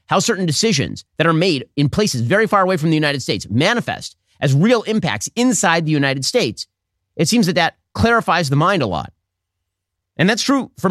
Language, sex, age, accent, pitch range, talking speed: English, male, 30-49, American, 125-190 Hz, 200 wpm